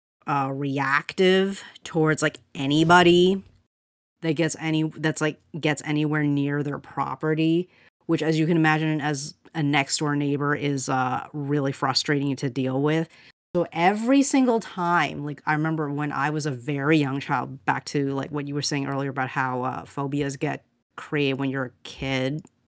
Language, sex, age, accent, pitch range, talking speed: English, female, 30-49, American, 140-165 Hz, 170 wpm